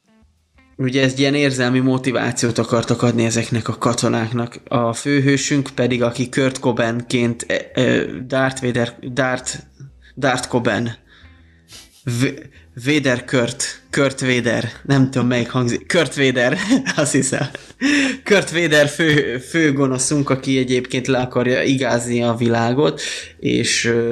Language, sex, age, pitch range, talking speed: Hungarian, male, 20-39, 120-130 Hz, 95 wpm